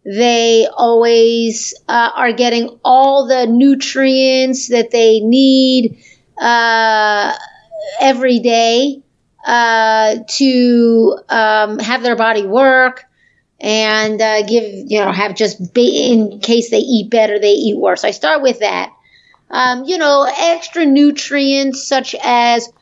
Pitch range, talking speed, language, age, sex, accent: 225-255 Hz, 125 wpm, English, 30-49, female, American